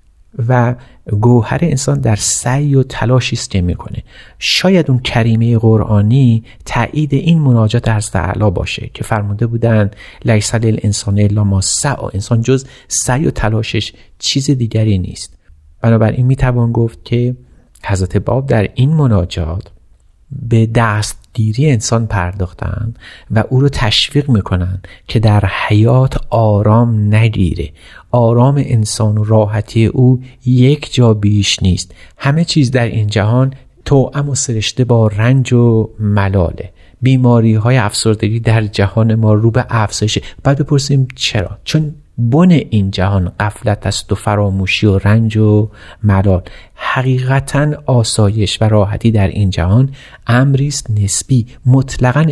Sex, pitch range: male, 105-130 Hz